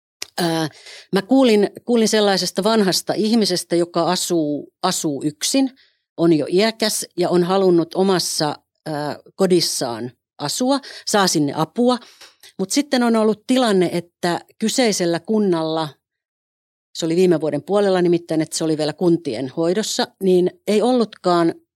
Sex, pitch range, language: female, 165-210 Hz, Finnish